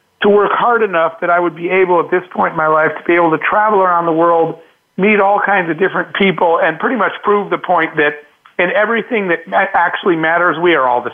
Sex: male